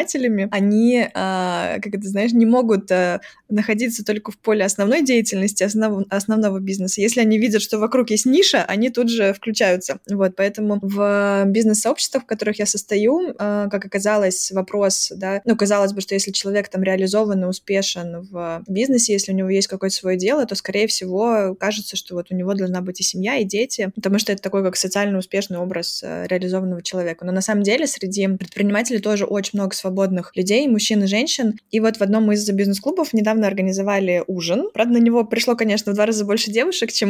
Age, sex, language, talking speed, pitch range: 20-39, female, Russian, 190 wpm, 195-225 Hz